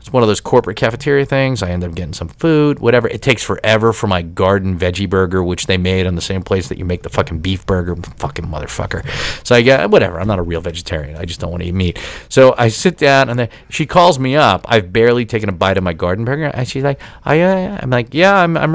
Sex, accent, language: male, American, English